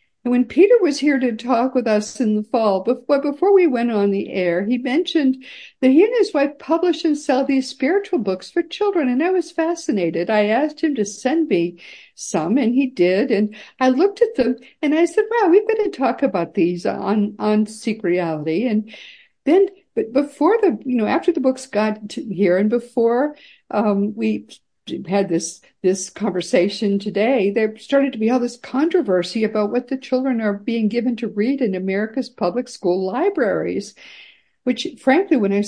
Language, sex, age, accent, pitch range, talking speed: English, female, 60-79, American, 210-300 Hz, 195 wpm